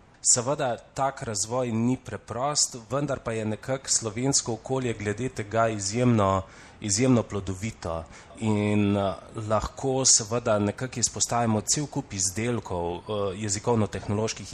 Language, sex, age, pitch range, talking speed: Italian, male, 30-49, 100-125 Hz, 100 wpm